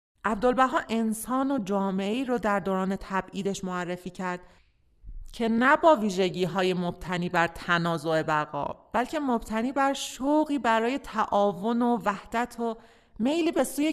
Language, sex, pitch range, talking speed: Persian, male, 185-245 Hz, 135 wpm